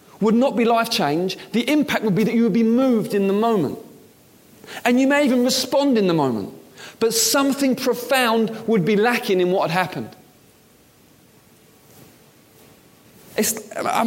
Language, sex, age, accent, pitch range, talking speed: English, male, 30-49, British, 190-235 Hz, 155 wpm